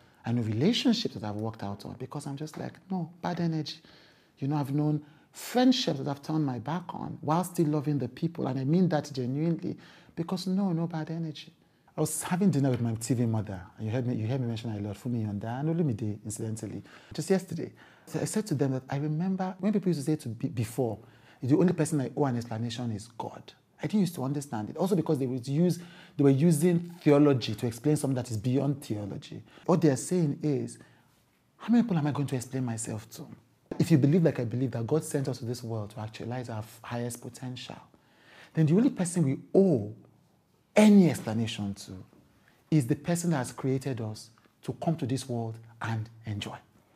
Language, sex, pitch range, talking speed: English, male, 115-160 Hz, 220 wpm